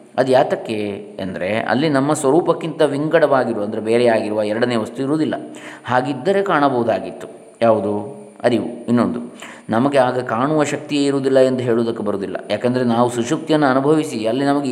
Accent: native